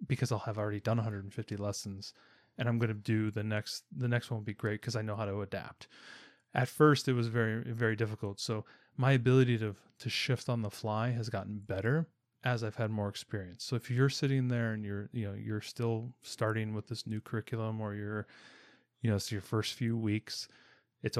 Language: English